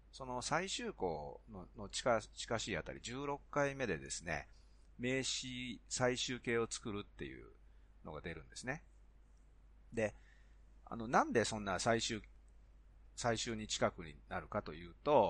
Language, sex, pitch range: Japanese, male, 85-135 Hz